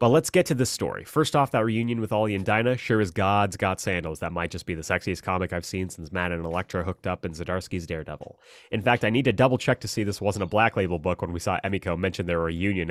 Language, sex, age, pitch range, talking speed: English, male, 30-49, 90-115 Hz, 275 wpm